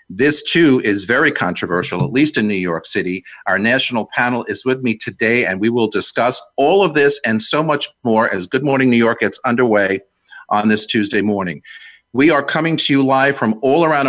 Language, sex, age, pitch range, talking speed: English, male, 50-69, 115-155 Hz, 210 wpm